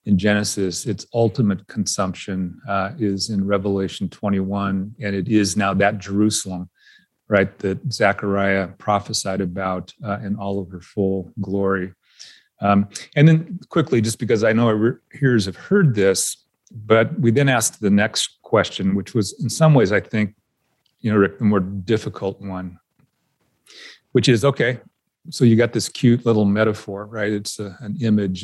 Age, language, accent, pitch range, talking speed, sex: 40-59, English, American, 100-115 Hz, 160 wpm, male